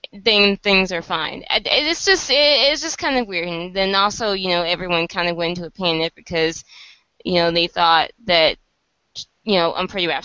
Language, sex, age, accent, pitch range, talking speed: English, female, 20-39, American, 165-200 Hz, 210 wpm